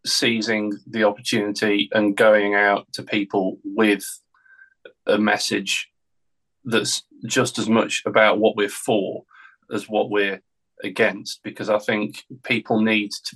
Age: 30-49